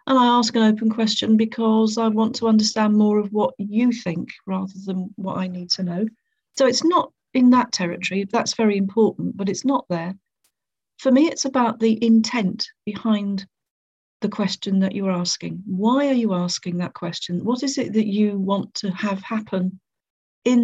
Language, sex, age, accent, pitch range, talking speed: English, female, 40-59, British, 195-230 Hz, 185 wpm